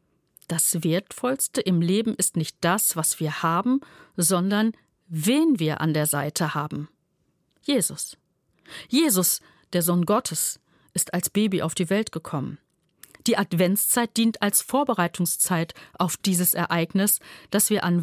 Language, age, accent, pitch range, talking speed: German, 50-69, German, 165-220 Hz, 135 wpm